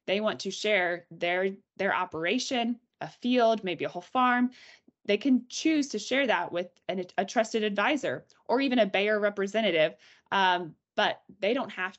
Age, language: 20-39, English